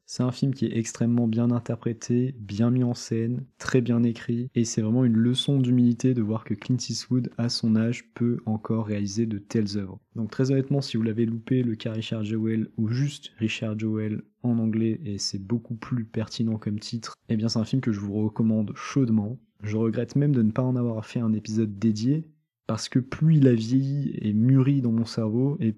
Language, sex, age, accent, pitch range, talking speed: French, male, 20-39, French, 110-120 Hz, 215 wpm